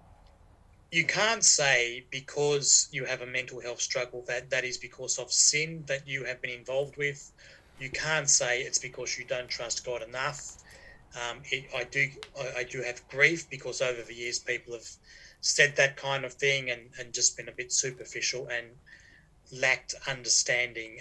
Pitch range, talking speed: 120-140 Hz, 175 wpm